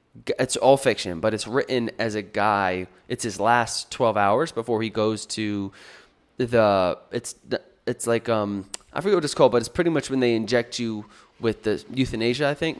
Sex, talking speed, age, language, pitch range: male, 190 wpm, 20-39, English, 105-130 Hz